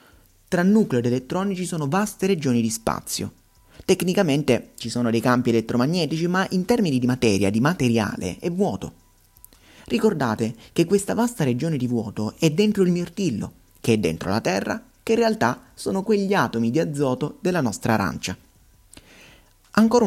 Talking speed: 155 wpm